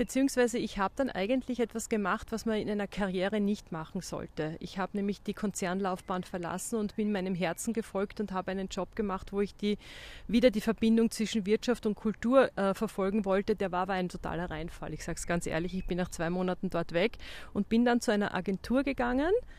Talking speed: 210 wpm